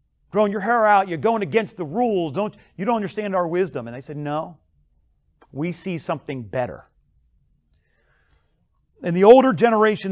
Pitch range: 135-190 Hz